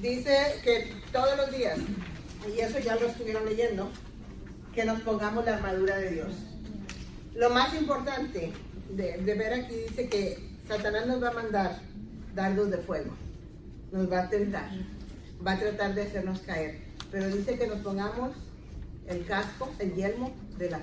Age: 40-59